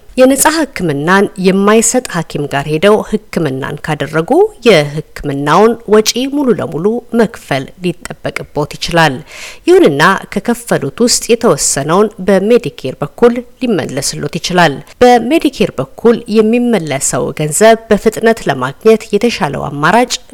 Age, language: 50-69, Amharic